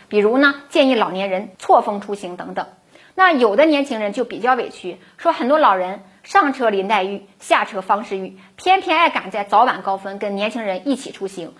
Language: Chinese